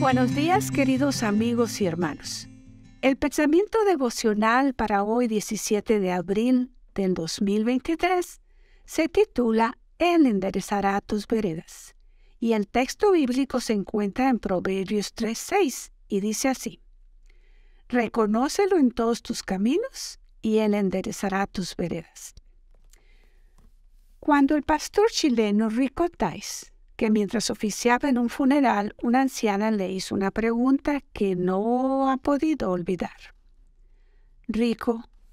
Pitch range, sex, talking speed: 200-280 Hz, female, 115 wpm